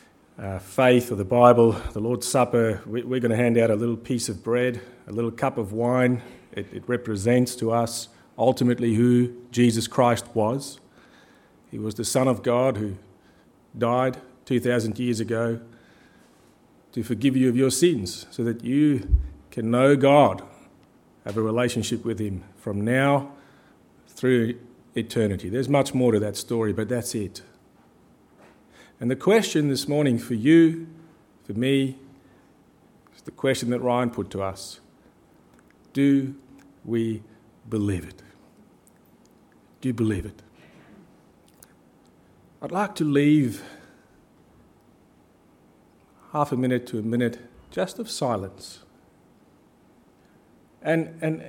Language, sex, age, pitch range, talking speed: English, male, 40-59, 110-135 Hz, 135 wpm